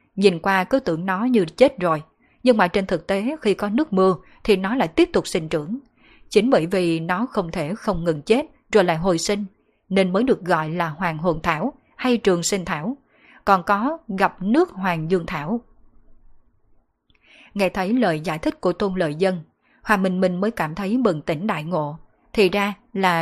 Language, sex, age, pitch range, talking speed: Vietnamese, female, 20-39, 175-220 Hz, 200 wpm